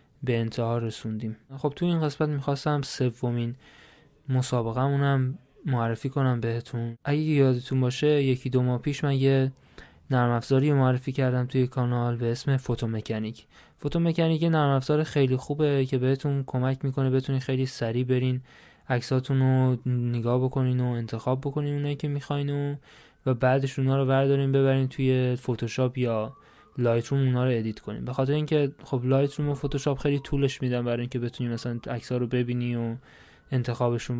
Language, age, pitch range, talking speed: Persian, 20-39, 120-140 Hz, 150 wpm